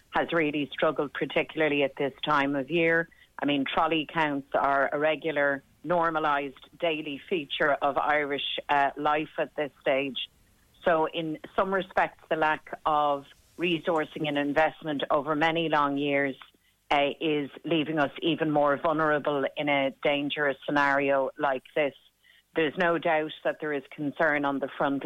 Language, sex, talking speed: English, female, 150 wpm